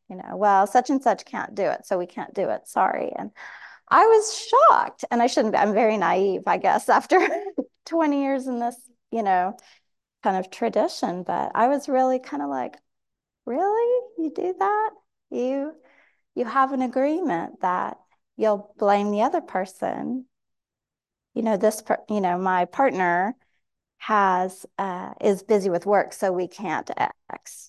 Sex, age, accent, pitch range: female, 30-49, American, 195-300 Hz